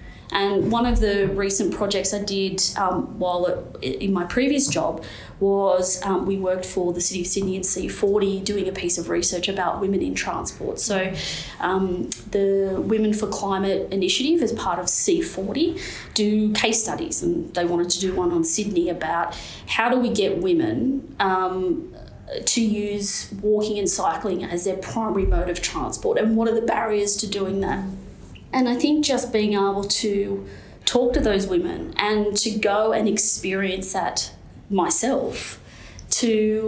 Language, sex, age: English, female, 30-49